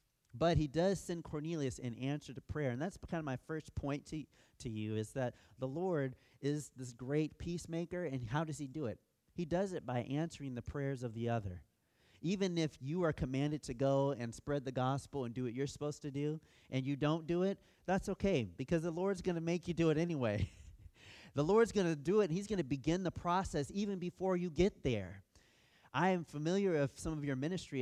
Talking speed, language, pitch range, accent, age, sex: 225 wpm, English, 130-175 Hz, American, 30-49, male